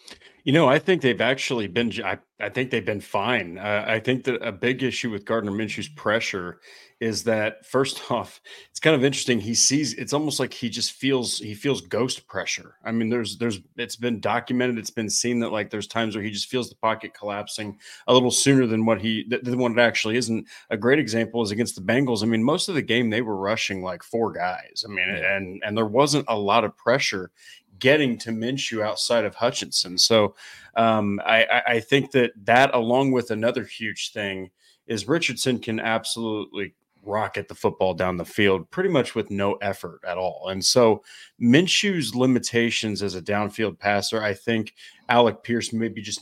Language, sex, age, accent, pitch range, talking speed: English, male, 30-49, American, 105-125 Hz, 210 wpm